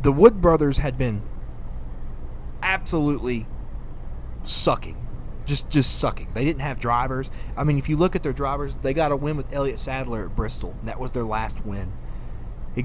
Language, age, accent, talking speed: English, 20-39, American, 175 wpm